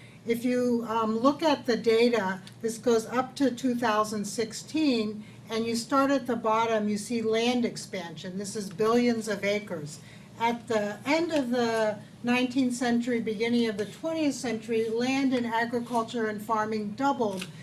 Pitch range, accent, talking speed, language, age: 210-250 Hz, American, 155 wpm, English, 60-79